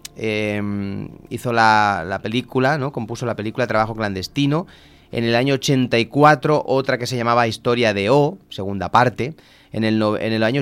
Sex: male